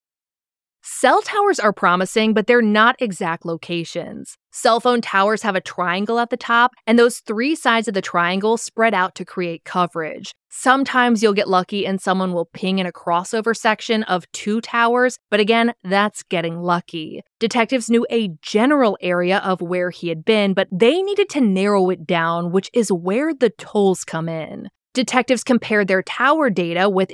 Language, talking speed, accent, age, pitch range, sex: English, 175 wpm, American, 20-39, 180-235 Hz, female